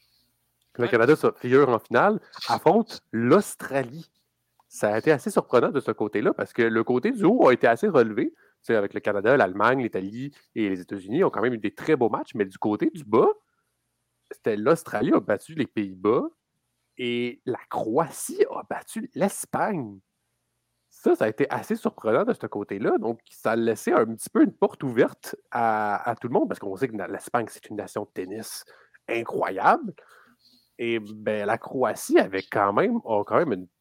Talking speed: 190 wpm